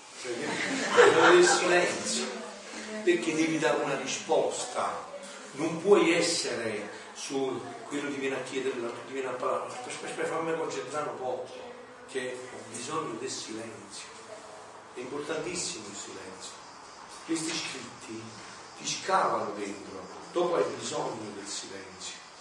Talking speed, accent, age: 110 wpm, native, 40-59